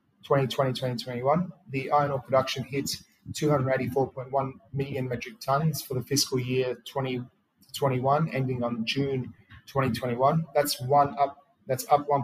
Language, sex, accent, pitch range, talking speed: English, male, Australian, 125-140 Hz, 125 wpm